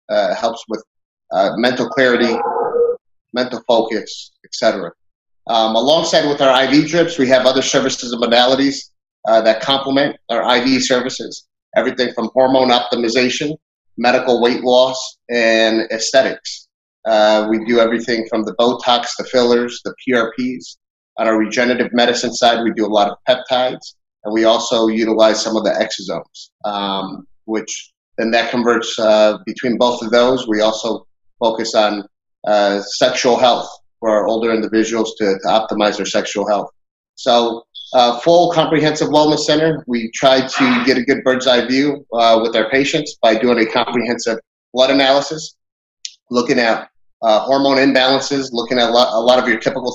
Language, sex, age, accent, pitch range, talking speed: English, male, 30-49, American, 110-130 Hz, 160 wpm